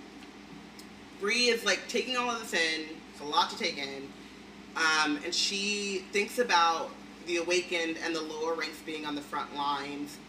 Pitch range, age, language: 145-175 Hz, 30-49, English